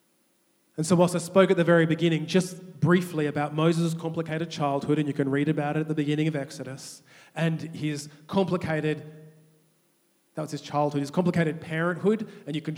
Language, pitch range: English, 140-175 Hz